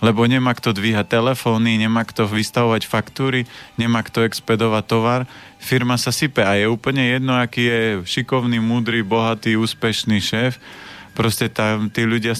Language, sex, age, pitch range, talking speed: Slovak, male, 30-49, 105-120 Hz, 150 wpm